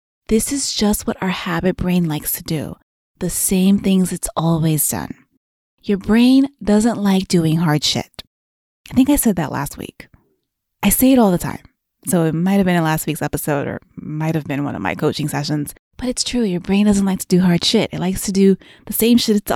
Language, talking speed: English, 220 wpm